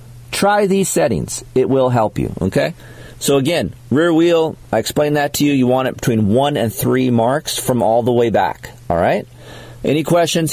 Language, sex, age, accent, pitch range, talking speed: English, male, 40-59, American, 120-150 Hz, 195 wpm